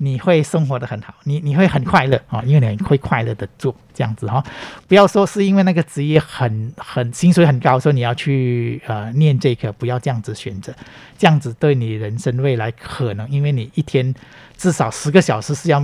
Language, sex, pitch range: Chinese, male, 115-145 Hz